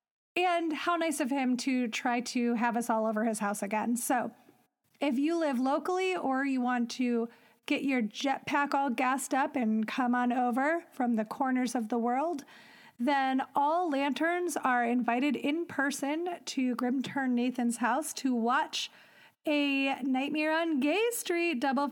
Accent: American